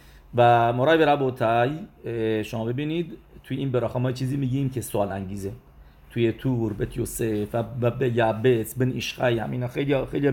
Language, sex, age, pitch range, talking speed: English, male, 40-59, 105-130 Hz, 150 wpm